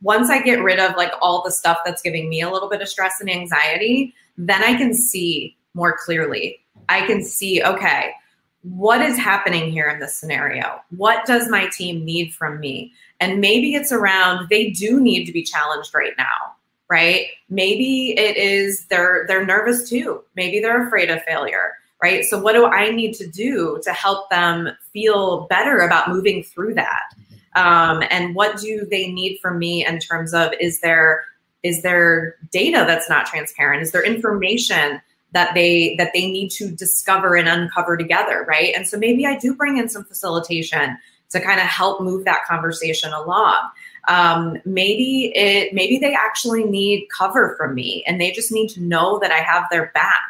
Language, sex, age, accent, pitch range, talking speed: English, female, 20-39, American, 170-220 Hz, 185 wpm